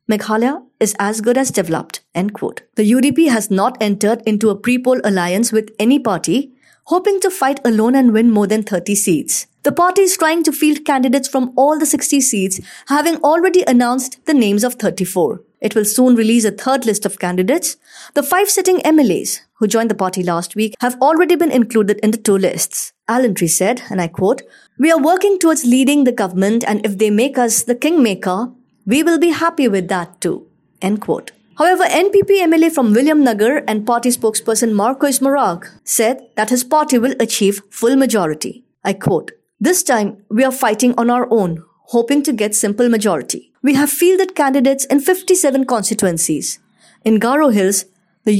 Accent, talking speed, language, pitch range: Indian, 185 wpm, English, 210-285 Hz